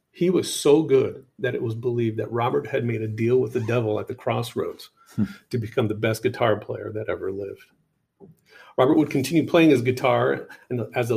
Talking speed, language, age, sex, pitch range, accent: 205 wpm, English, 40-59, male, 110-140 Hz, American